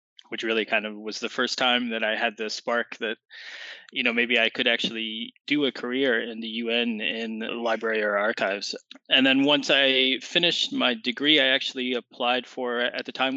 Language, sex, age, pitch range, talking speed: English, male, 20-39, 105-125 Hz, 195 wpm